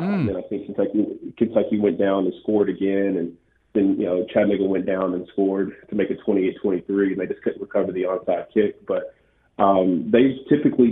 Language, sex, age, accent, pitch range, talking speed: English, male, 30-49, American, 95-110 Hz, 205 wpm